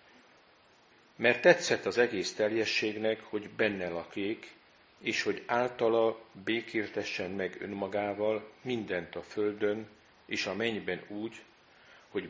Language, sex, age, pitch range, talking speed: Hungarian, male, 50-69, 100-120 Hz, 105 wpm